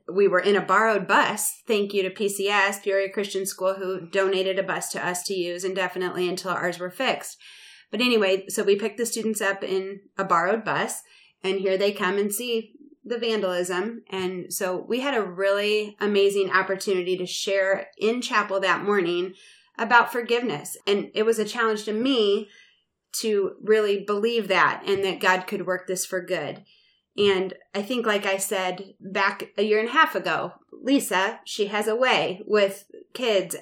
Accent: American